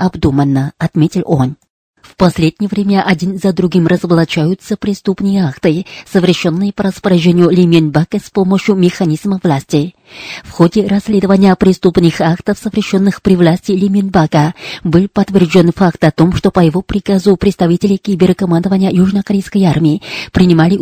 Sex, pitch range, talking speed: female, 170-195 Hz, 125 wpm